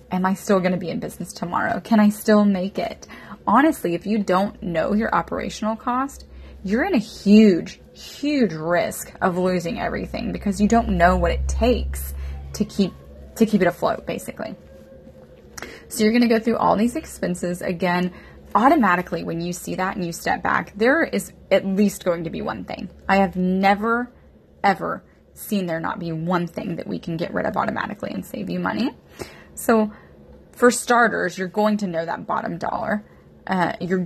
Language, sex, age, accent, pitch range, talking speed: English, female, 20-39, American, 175-225 Hz, 185 wpm